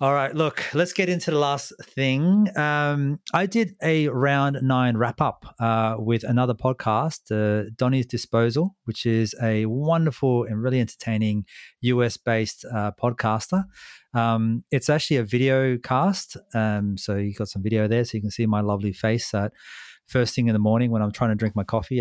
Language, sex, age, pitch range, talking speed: English, male, 30-49, 105-135 Hz, 185 wpm